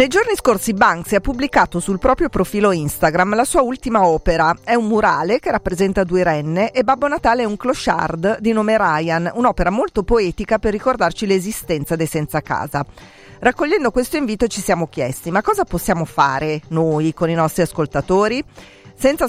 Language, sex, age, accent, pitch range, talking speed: Italian, female, 40-59, native, 150-210 Hz, 170 wpm